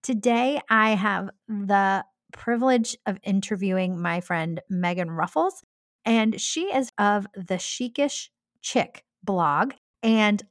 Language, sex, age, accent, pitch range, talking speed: English, female, 30-49, American, 195-255 Hz, 115 wpm